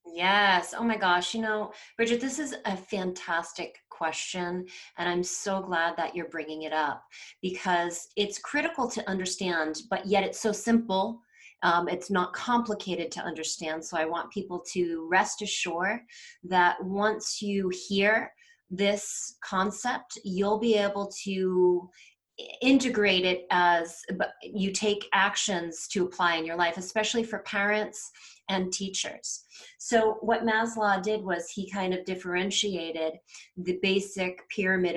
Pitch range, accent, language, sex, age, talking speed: 175-210 Hz, American, English, female, 30-49, 140 wpm